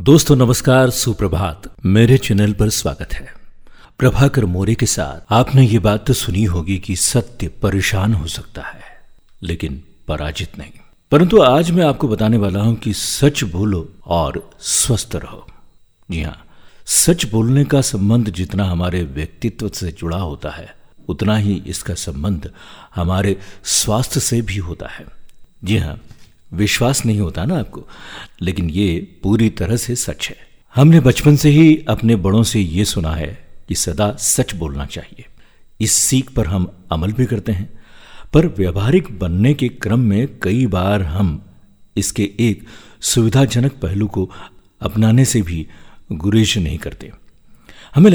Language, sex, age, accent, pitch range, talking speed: Hindi, male, 50-69, native, 95-125 Hz, 150 wpm